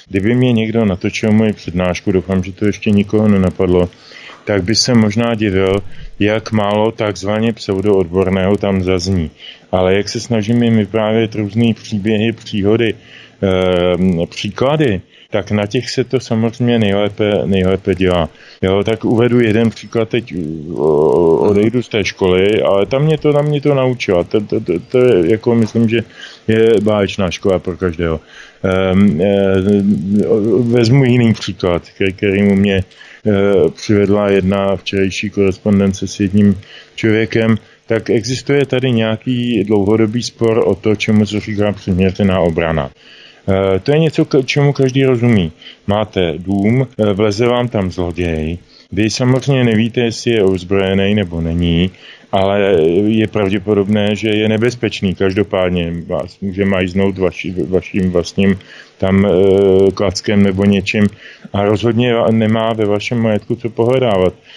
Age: 20-39